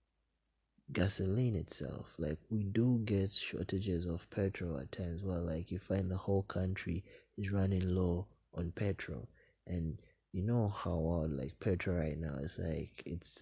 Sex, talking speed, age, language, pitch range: male, 155 wpm, 20-39, English, 85-100 Hz